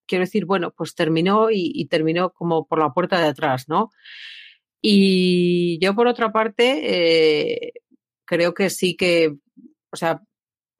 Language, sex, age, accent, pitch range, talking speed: Spanish, female, 40-59, Spanish, 155-185 Hz, 150 wpm